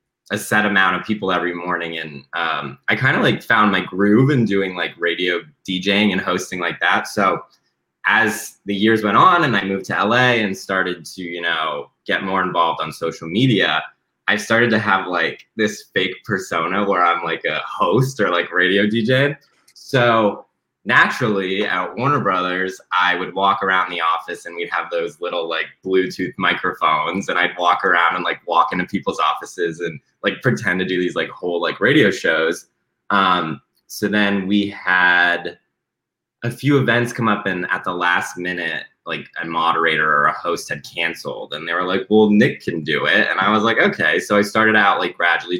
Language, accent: English, American